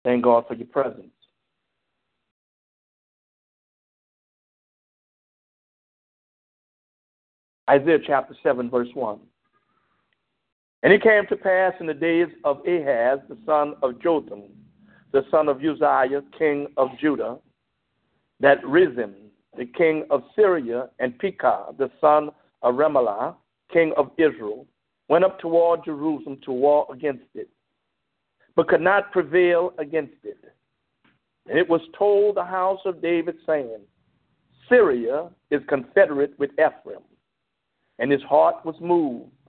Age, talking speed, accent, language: 60-79, 120 wpm, American, English